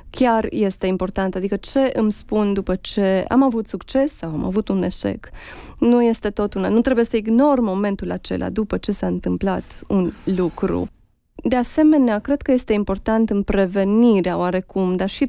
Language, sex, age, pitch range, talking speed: Romanian, female, 20-39, 190-220 Hz, 170 wpm